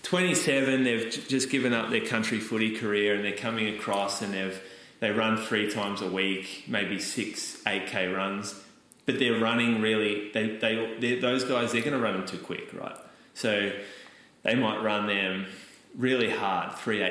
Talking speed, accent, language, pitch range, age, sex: 180 wpm, Australian, English, 95-115 Hz, 20-39, male